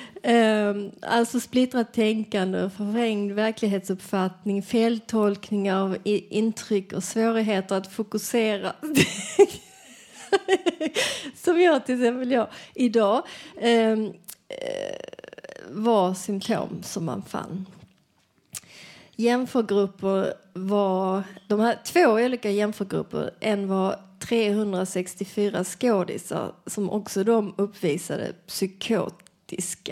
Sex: female